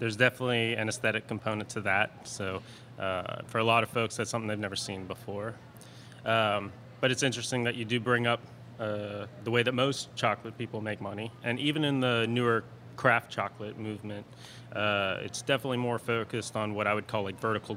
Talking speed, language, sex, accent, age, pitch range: 195 wpm, English, male, American, 30-49, 105-120 Hz